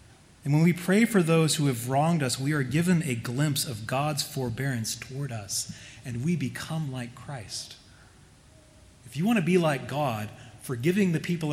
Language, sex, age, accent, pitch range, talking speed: English, male, 30-49, American, 115-140 Hz, 180 wpm